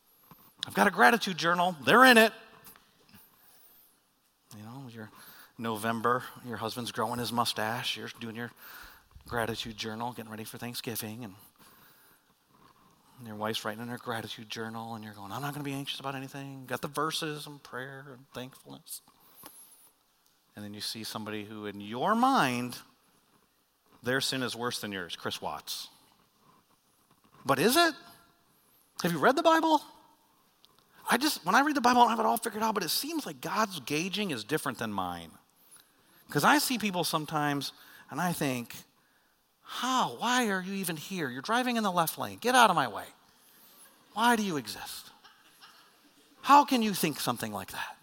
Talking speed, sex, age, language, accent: 170 wpm, male, 40-59, English, American